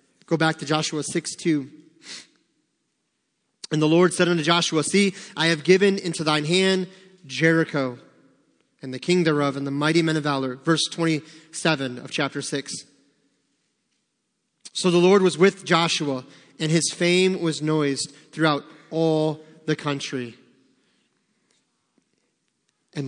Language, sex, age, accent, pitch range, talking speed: English, male, 30-49, American, 135-165 Hz, 135 wpm